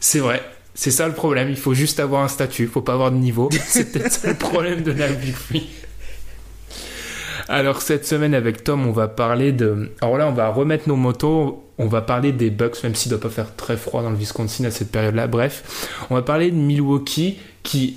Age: 20-39